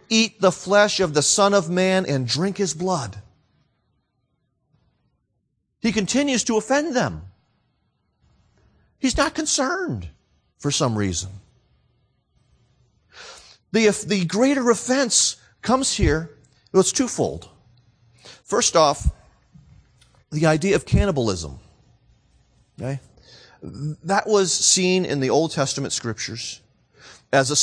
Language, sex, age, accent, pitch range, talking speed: English, male, 40-59, American, 115-185 Hz, 105 wpm